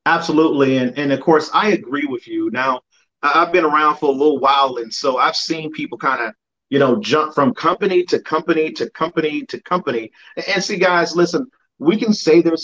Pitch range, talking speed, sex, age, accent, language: 155-215 Hz, 210 wpm, male, 40-59, American, English